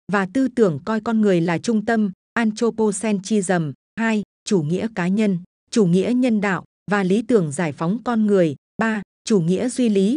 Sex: female